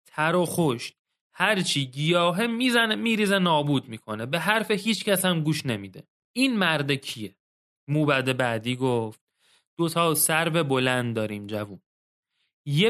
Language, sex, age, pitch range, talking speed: Persian, male, 30-49, 130-190 Hz, 135 wpm